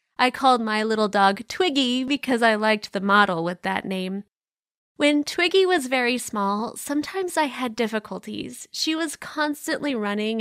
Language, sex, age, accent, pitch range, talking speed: English, female, 20-39, American, 220-285 Hz, 155 wpm